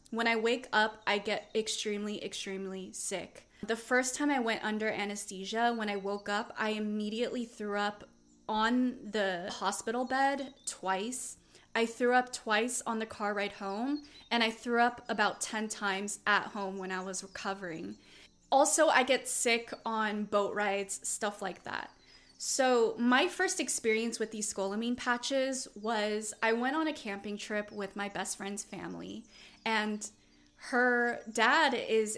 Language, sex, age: English, female, 20-39